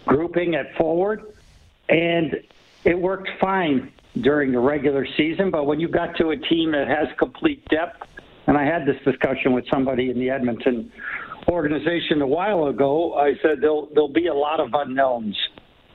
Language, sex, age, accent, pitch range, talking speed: English, male, 60-79, American, 135-160 Hz, 170 wpm